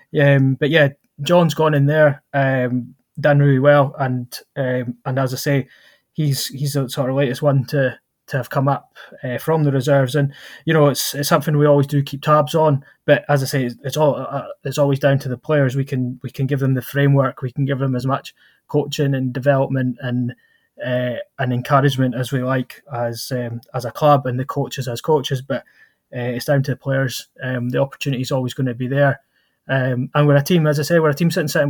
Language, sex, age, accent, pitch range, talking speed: English, male, 20-39, British, 130-145 Hz, 230 wpm